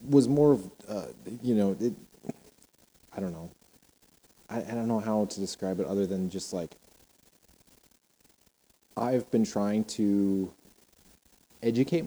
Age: 30-49